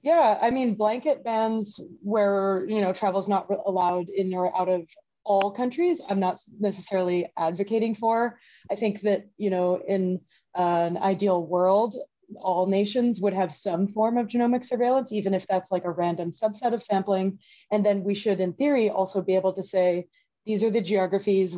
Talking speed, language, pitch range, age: 185 wpm, English, 180-215 Hz, 20-39